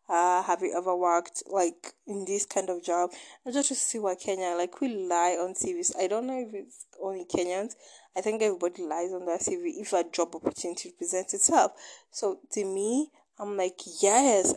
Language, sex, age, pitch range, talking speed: English, female, 20-39, 190-300 Hz, 205 wpm